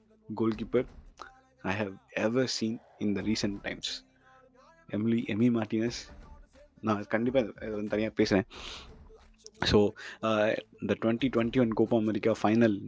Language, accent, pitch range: Tamil, native, 100-120 Hz